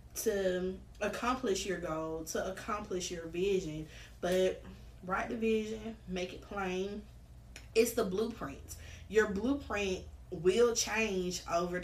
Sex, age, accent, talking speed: female, 20-39, American, 115 wpm